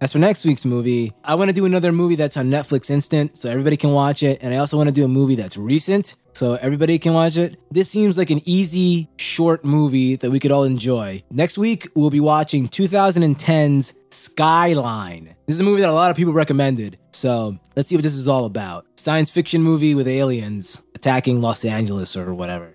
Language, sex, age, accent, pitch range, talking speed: English, male, 20-39, American, 125-160 Hz, 215 wpm